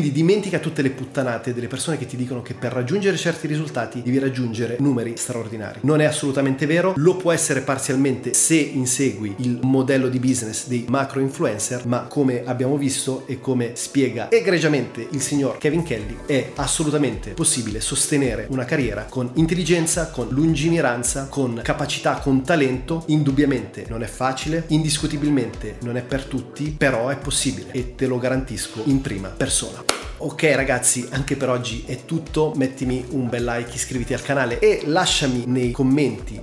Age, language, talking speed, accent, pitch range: 30-49, Italian, 165 wpm, native, 125-150 Hz